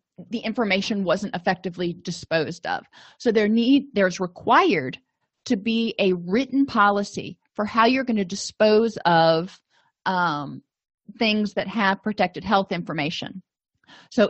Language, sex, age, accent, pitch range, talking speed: English, female, 30-49, American, 185-230 Hz, 130 wpm